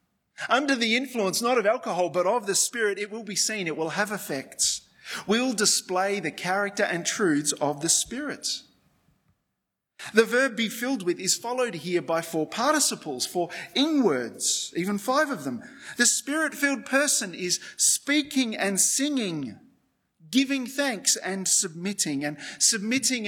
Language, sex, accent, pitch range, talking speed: English, male, Australian, 165-240 Hz, 145 wpm